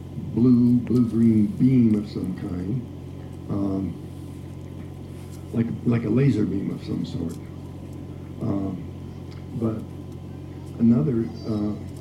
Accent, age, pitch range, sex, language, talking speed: American, 50-69, 105-125 Hz, male, English, 90 wpm